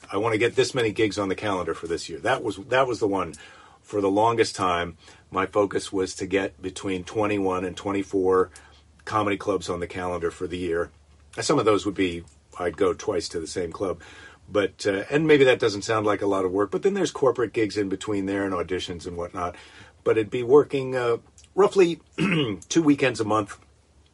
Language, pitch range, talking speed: English, 95-135 Hz, 215 wpm